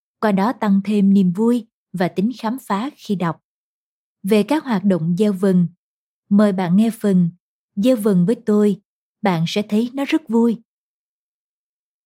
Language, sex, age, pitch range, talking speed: Vietnamese, female, 20-39, 175-230 Hz, 160 wpm